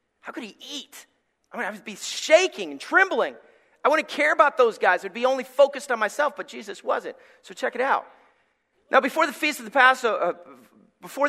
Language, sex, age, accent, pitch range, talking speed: English, male, 40-59, American, 170-265 Hz, 175 wpm